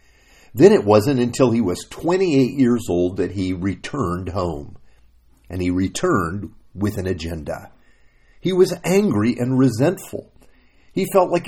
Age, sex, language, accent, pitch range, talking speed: 50-69, male, English, American, 95-140 Hz, 140 wpm